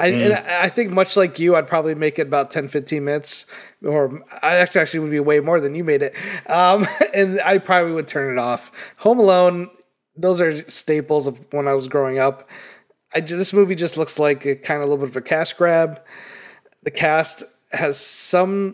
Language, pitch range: English, 150-195 Hz